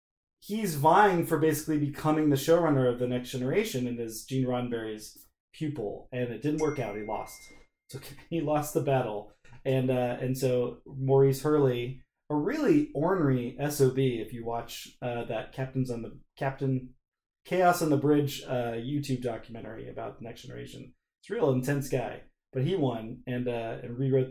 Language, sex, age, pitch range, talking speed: English, male, 20-39, 125-160 Hz, 180 wpm